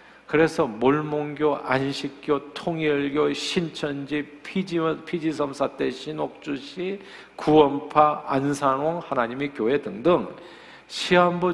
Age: 50-69